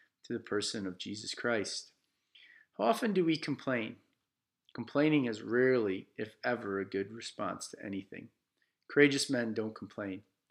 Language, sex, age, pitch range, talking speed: English, male, 40-59, 110-140 Hz, 145 wpm